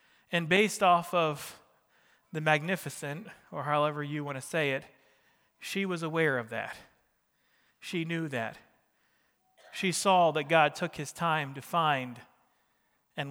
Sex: male